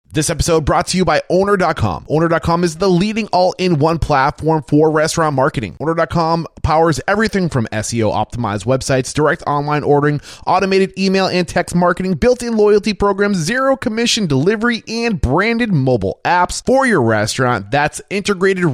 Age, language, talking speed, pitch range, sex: 20-39, English, 145 wpm, 130-185 Hz, male